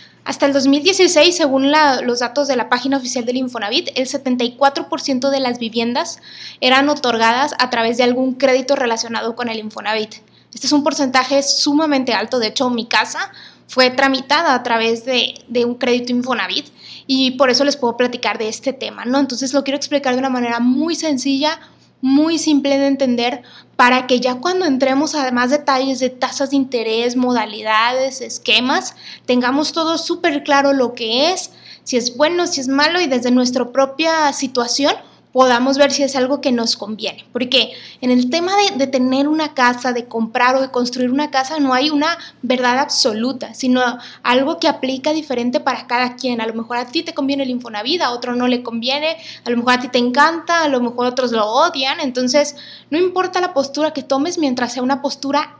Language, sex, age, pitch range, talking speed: Spanish, female, 20-39, 245-290 Hz, 190 wpm